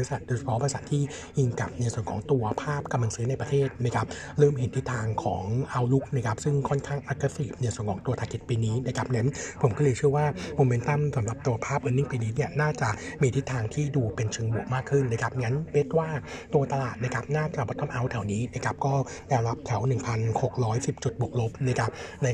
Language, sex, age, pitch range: Thai, male, 60-79, 115-140 Hz